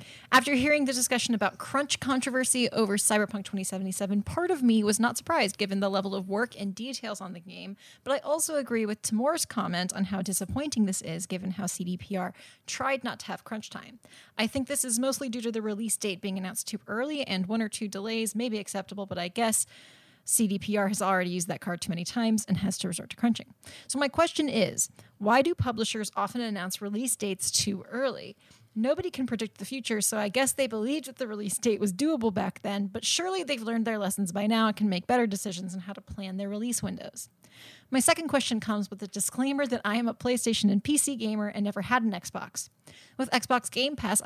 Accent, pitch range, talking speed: American, 195-245 Hz, 220 wpm